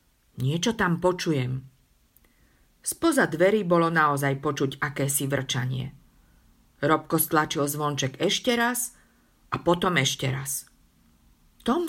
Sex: female